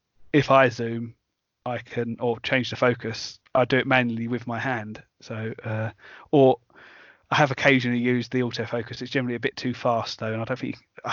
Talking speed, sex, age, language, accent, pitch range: 200 wpm, male, 30-49, English, British, 120-140 Hz